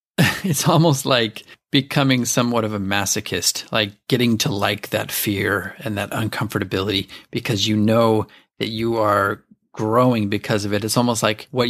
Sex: male